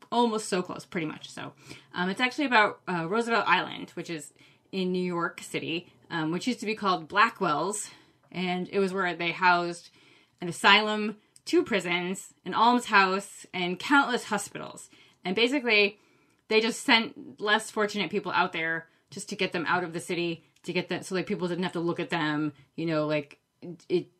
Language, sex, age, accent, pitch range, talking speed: English, female, 20-39, American, 170-205 Hz, 185 wpm